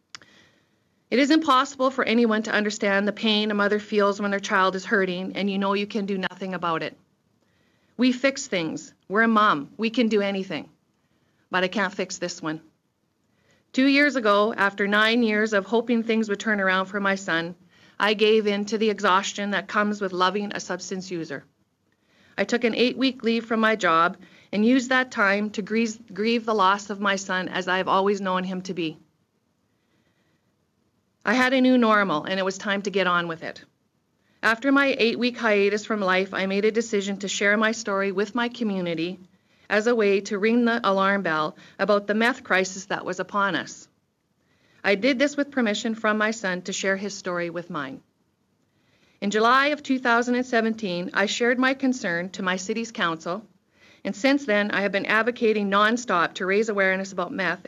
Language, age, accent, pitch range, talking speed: English, 40-59, American, 185-225 Hz, 190 wpm